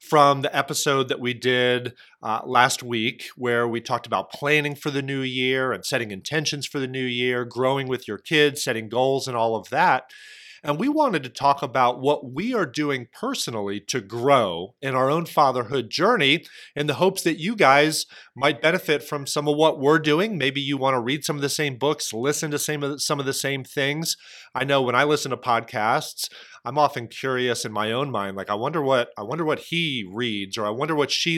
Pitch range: 125-150 Hz